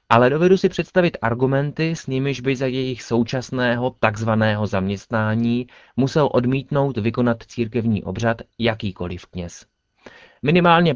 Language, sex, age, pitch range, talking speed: Czech, male, 30-49, 100-125 Hz, 115 wpm